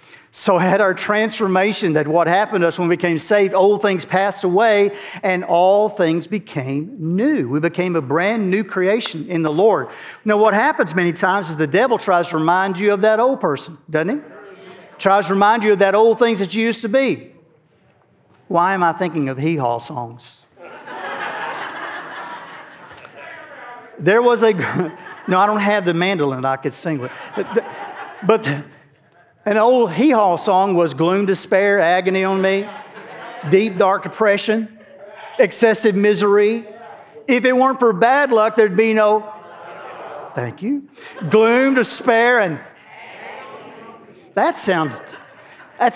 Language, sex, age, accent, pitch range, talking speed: English, male, 50-69, American, 180-225 Hz, 155 wpm